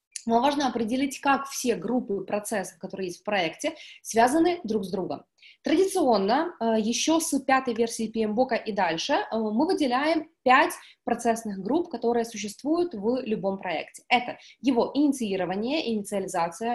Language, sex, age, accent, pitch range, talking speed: Ukrainian, female, 20-39, native, 215-275 Hz, 135 wpm